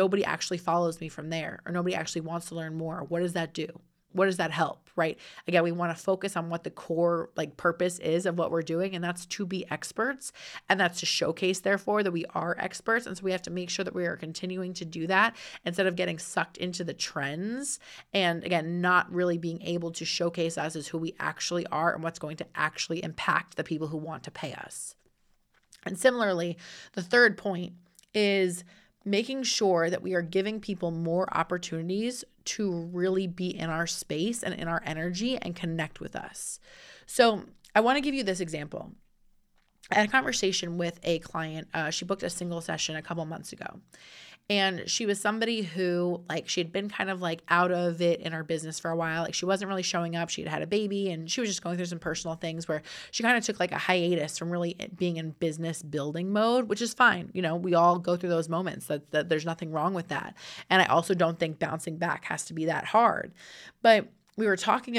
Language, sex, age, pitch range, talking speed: English, female, 30-49, 165-195 Hz, 225 wpm